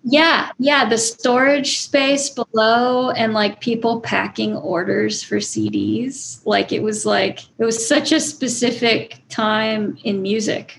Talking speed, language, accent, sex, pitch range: 140 wpm, English, American, female, 210-255 Hz